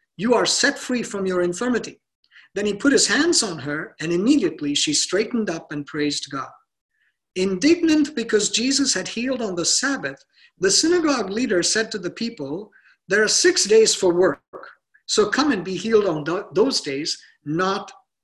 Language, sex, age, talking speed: English, male, 50-69, 170 wpm